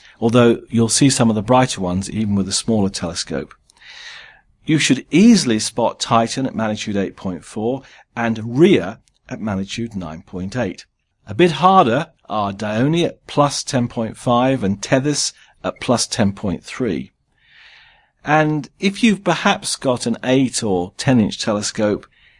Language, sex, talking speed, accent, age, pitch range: English, male, 135 wpm, British, 50-69, 105-150 Hz